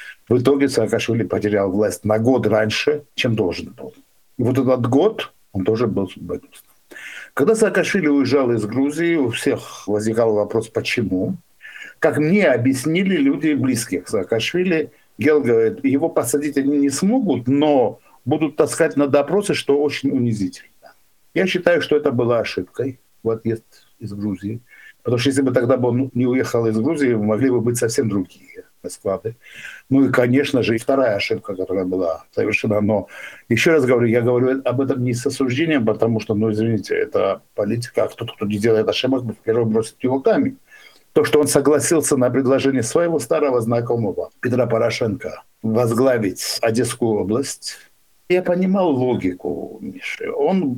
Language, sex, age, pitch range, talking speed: Russian, male, 60-79, 115-150 Hz, 155 wpm